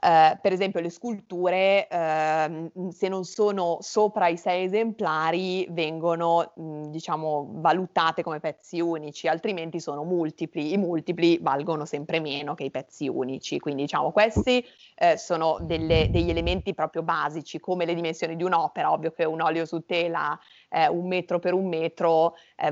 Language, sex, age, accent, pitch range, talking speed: Italian, female, 30-49, native, 160-190 Hz, 160 wpm